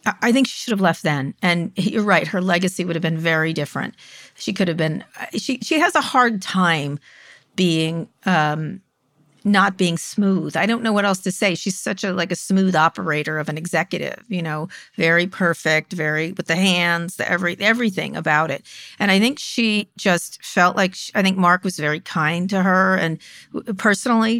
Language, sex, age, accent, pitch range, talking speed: English, female, 50-69, American, 165-200 Hz, 195 wpm